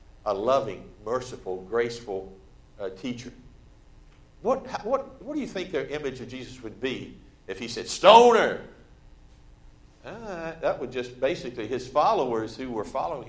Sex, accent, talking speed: male, American, 150 wpm